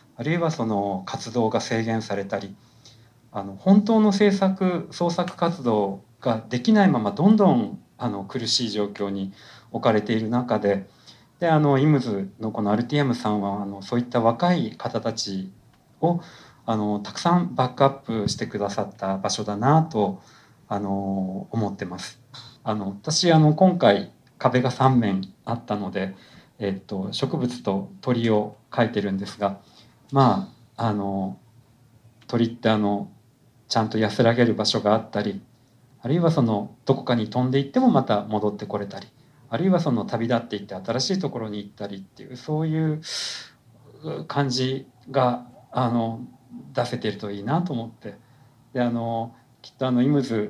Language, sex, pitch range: Japanese, male, 105-130 Hz